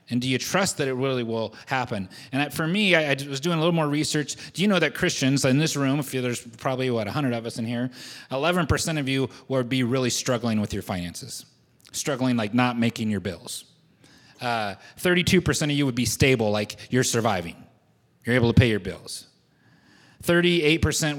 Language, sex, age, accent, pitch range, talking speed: English, male, 30-49, American, 110-140 Hz, 195 wpm